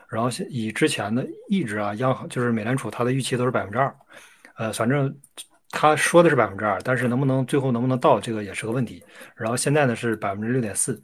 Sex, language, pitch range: male, Chinese, 115-135 Hz